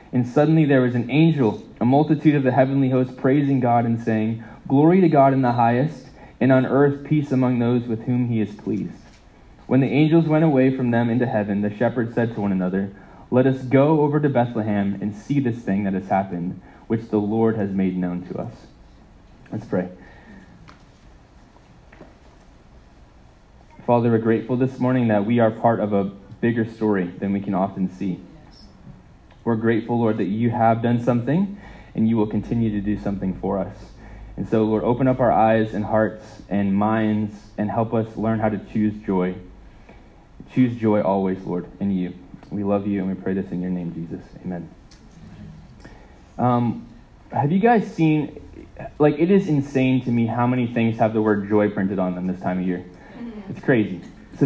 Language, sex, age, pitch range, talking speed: English, male, 20-39, 100-130 Hz, 190 wpm